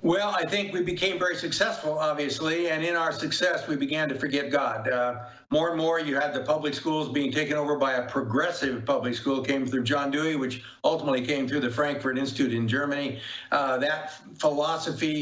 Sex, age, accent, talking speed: male, 60-79, American, 195 wpm